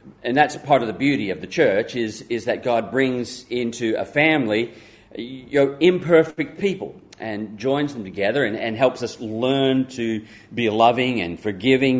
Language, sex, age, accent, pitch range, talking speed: English, male, 40-59, Australian, 105-135 Hz, 180 wpm